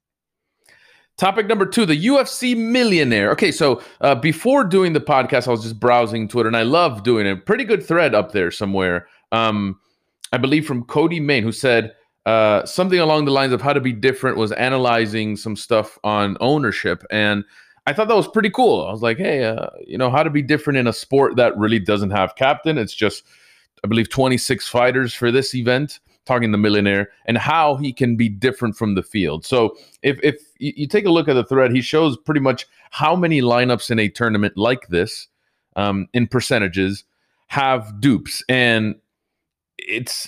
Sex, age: male, 30-49